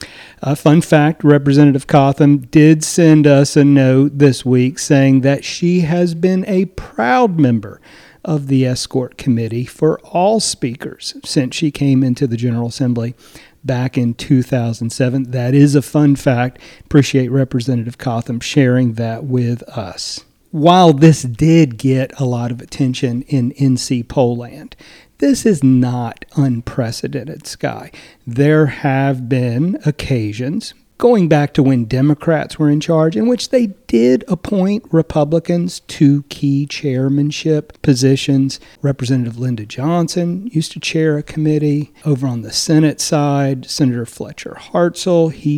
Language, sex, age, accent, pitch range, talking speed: English, male, 40-59, American, 125-155 Hz, 140 wpm